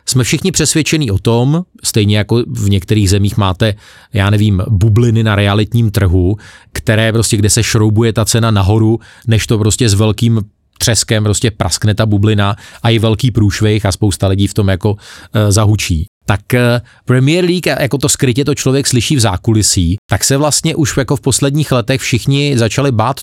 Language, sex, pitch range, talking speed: Slovak, male, 100-120 Hz, 175 wpm